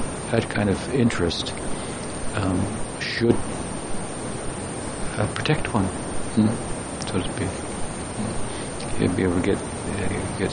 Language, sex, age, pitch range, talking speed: English, male, 60-79, 90-110 Hz, 125 wpm